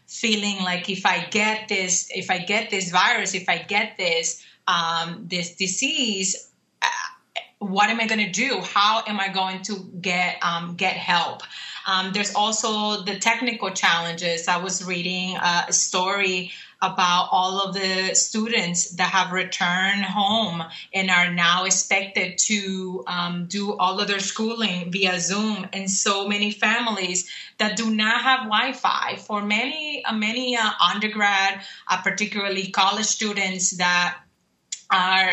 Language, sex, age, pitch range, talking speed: English, female, 20-39, 180-210 Hz, 150 wpm